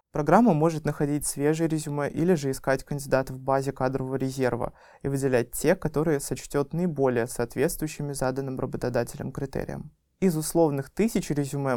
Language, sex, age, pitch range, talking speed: Russian, male, 20-39, 130-150 Hz, 140 wpm